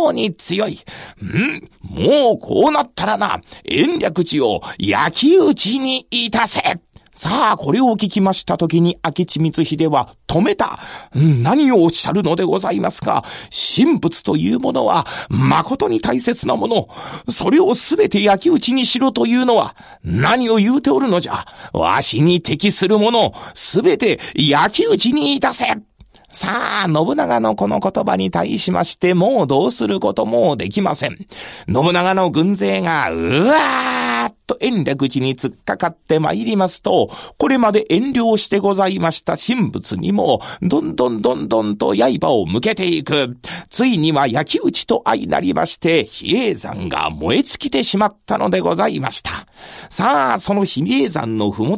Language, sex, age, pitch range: Japanese, male, 40-59, 160-230 Hz